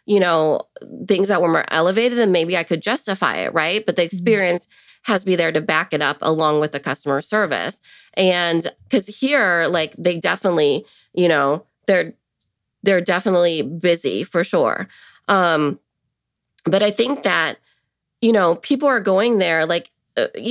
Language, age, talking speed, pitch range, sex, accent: English, 30-49, 165 wpm, 170-215 Hz, female, American